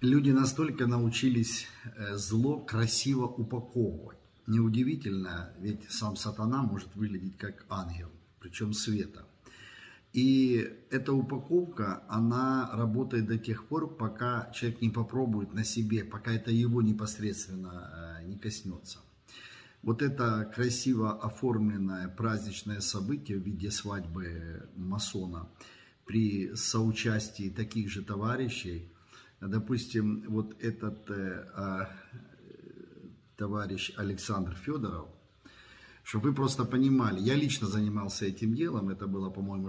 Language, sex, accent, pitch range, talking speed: Russian, male, native, 95-120 Hz, 105 wpm